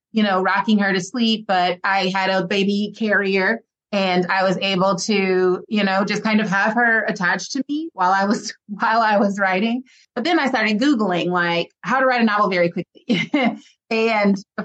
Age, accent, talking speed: 30-49, American, 200 wpm